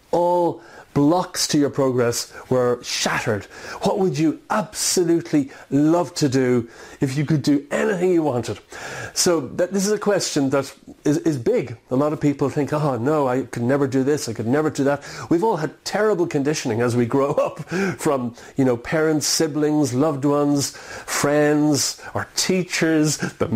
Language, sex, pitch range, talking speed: English, male, 120-155 Hz, 170 wpm